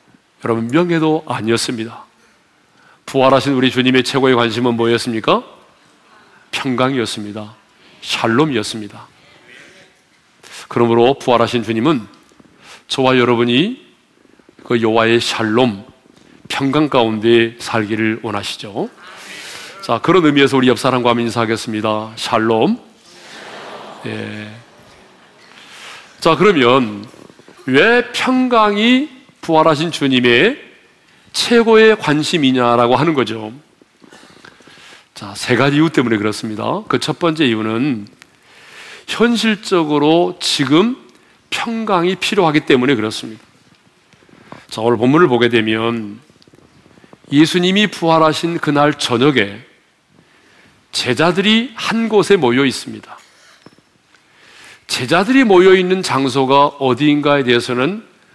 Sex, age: male, 40-59